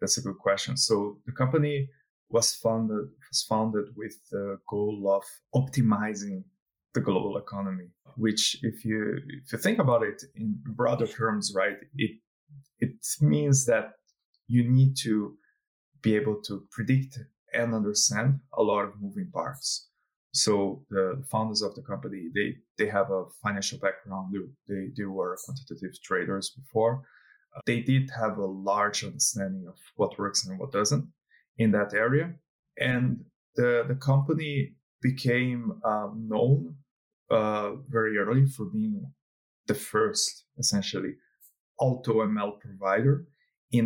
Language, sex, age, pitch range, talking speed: English, male, 20-39, 105-135 Hz, 140 wpm